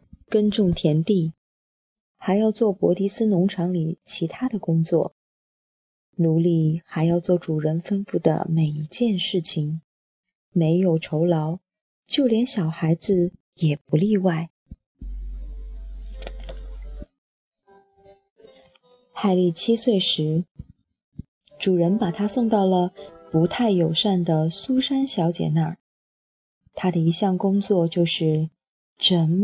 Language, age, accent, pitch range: Chinese, 20-39, native, 165-220 Hz